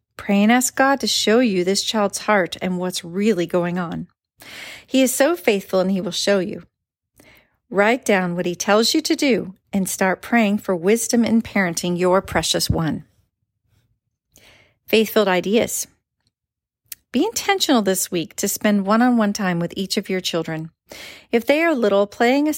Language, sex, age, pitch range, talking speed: English, female, 40-59, 180-230 Hz, 165 wpm